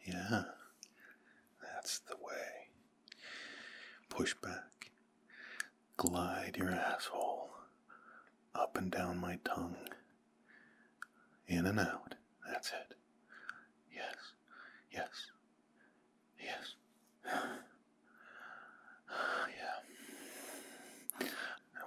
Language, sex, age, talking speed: English, male, 40-59, 65 wpm